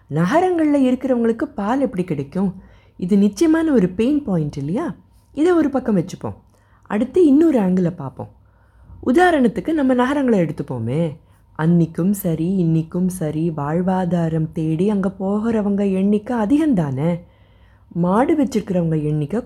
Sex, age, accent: female, 20-39, native